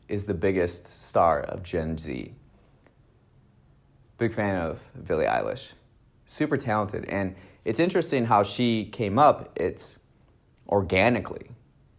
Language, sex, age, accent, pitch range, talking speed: English, male, 30-49, American, 95-120 Hz, 115 wpm